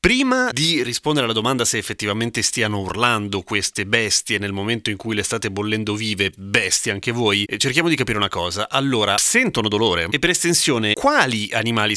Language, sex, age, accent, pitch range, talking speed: Italian, male, 30-49, native, 105-145 Hz, 175 wpm